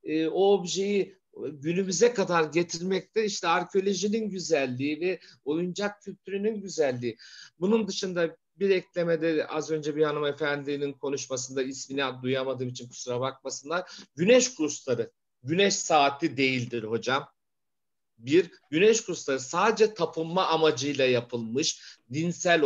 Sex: male